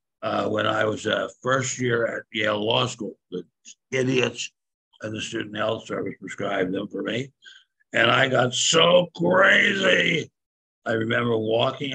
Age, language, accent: 60-79, English, American